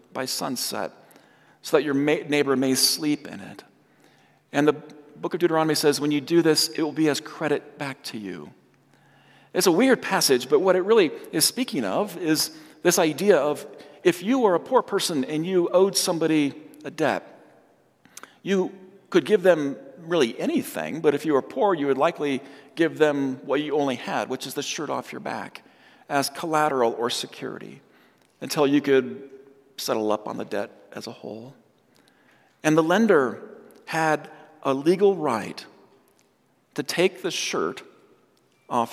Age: 40-59